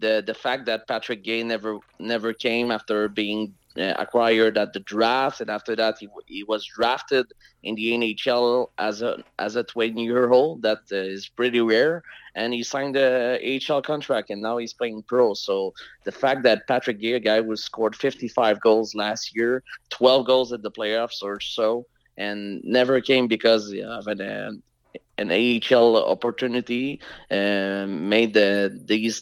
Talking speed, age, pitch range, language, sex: 175 wpm, 30-49, 110-125 Hz, English, male